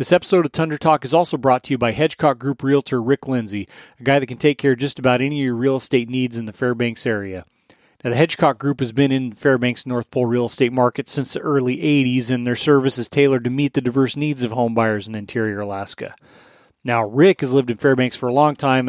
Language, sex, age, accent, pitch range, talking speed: English, male, 30-49, American, 120-140 Hz, 250 wpm